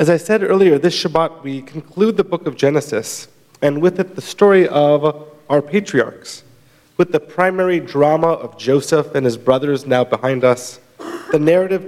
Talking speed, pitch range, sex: 170 wpm, 135-165 Hz, male